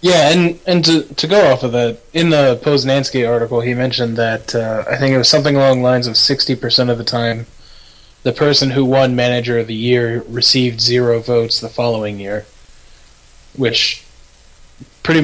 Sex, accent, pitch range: male, American, 110-135 Hz